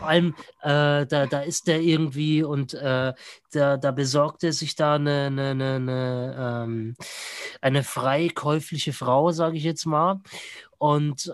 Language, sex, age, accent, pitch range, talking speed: German, male, 20-39, German, 140-170 Hz, 125 wpm